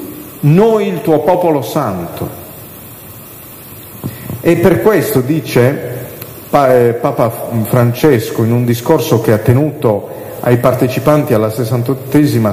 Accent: native